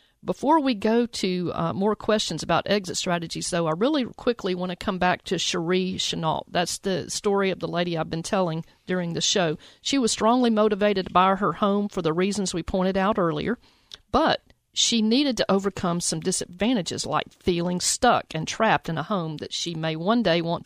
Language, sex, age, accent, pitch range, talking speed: English, female, 50-69, American, 170-225 Hz, 200 wpm